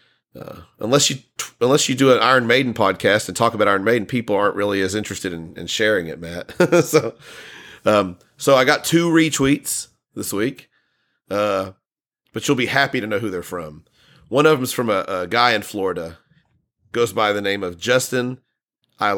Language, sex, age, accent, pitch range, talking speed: English, male, 40-59, American, 100-130 Hz, 195 wpm